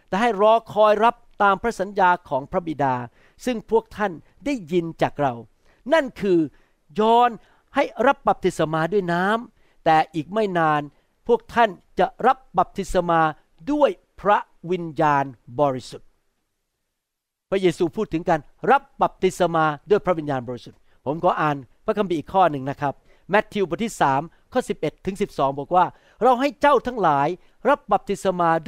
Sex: male